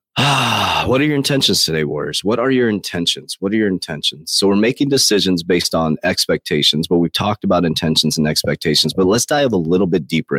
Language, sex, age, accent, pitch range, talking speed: English, male, 30-49, American, 80-115 Hz, 210 wpm